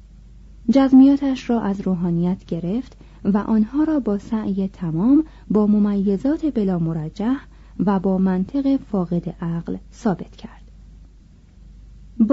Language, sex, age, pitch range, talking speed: Persian, female, 30-49, 190-250 Hz, 105 wpm